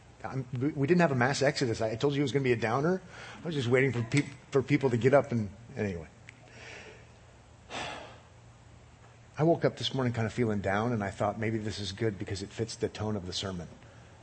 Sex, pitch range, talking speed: male, 115-155 Hz, 225 wpm